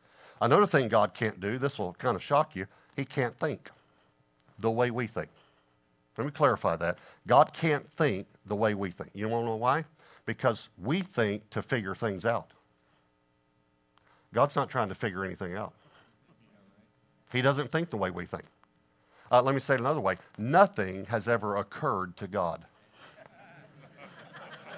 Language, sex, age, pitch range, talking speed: English, male, 50-69, 95-140 Hz, 165 wpm